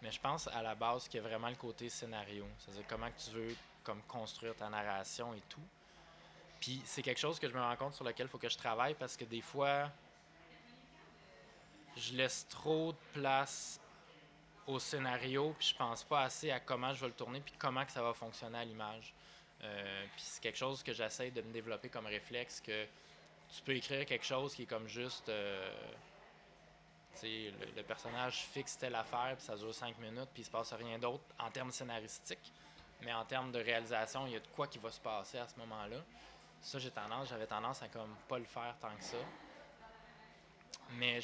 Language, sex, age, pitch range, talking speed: French, male, 20-39, 110-135 Hz, 210 wpm